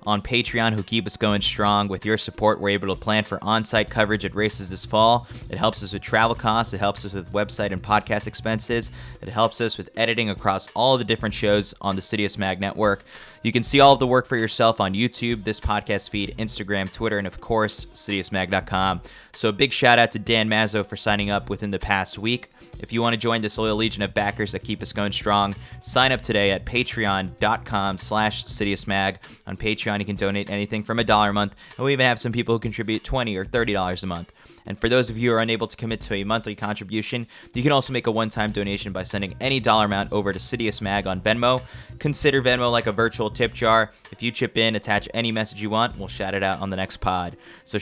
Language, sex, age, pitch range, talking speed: English, male, 20-39, 100-115 Hz, 230 wpm